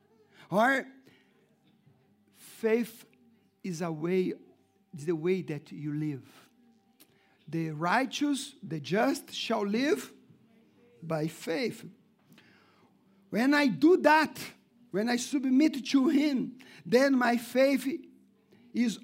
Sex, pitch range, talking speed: male, 185-240 Hz, 100 wpm